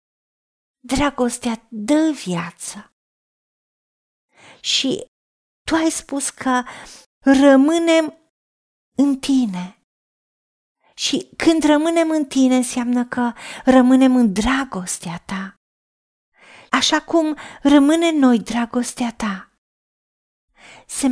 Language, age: Romanian, 40-59